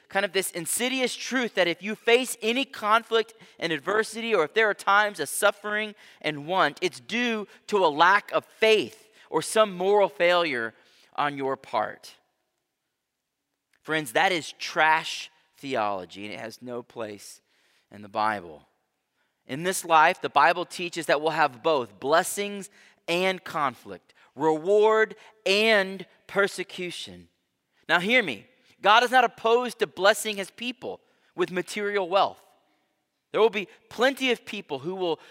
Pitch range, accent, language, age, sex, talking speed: 175-235 Hz, American, English, 30-49, male, 150 wpm